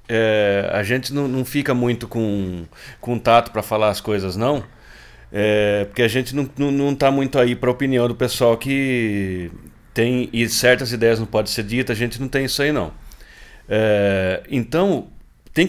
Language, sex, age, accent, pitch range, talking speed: Portuguese, male, 40-59, Brazilian, 105-140 Hz, 175 wpm